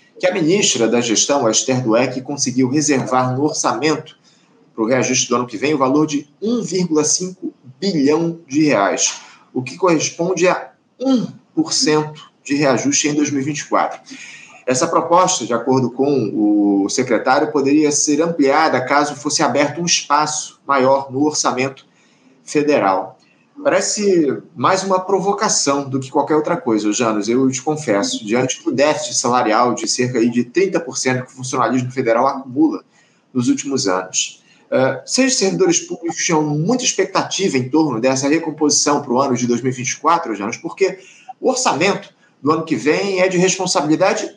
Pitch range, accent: 130-185 Hz, Brazilian